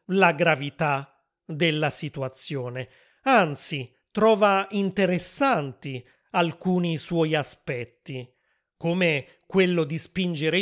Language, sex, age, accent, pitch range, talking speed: Italian, male, 30-49, native, 150-185 Hz, 80 wpm